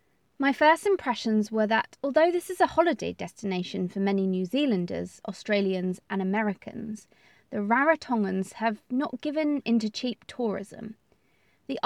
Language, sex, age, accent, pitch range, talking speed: English, female, 20-39, British, 200-260 Hz, 135 wpm